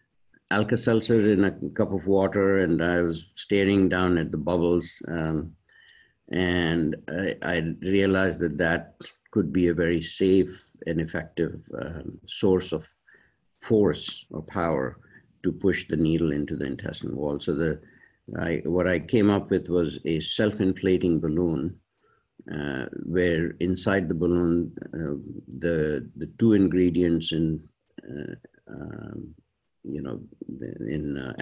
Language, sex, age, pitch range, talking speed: English, male, 60-79, 80-90 Hz, 140 wpm